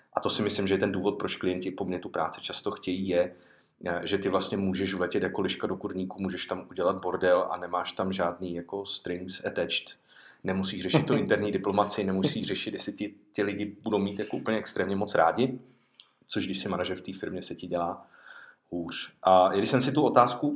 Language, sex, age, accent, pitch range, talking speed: Czech, male, 30-49, native, 90-105 Hz, 210 wpm